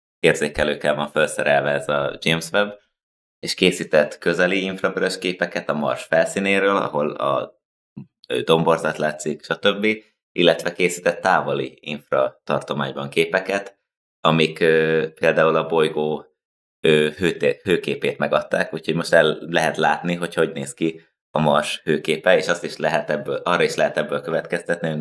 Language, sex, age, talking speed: Hungarian, male, 20-39, 140 wpm